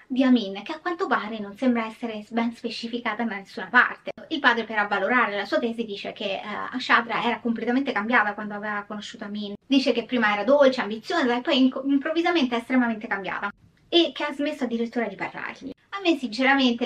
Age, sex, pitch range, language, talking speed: 20-39, female, 215-255 Hz, Italian, 195 wpm